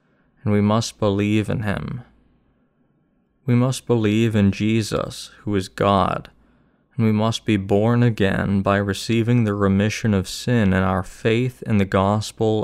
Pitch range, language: 100-115 Hz, English